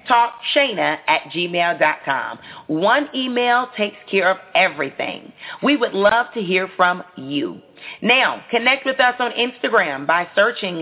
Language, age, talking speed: English, 40-59, 135 wpm